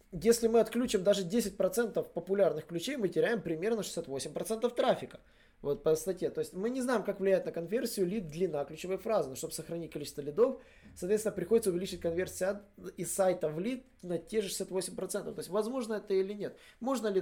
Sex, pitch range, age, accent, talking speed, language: male, 145-195 Hz, 20-39, native, 185 wpm, Russian